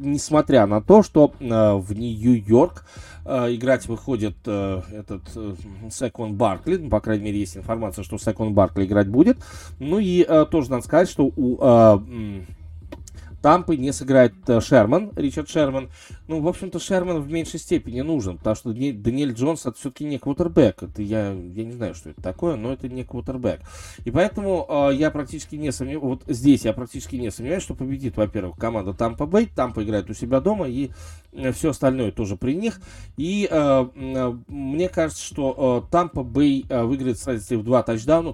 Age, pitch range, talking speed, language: 20-39, 105-140 Hz, 175 wpm, Russian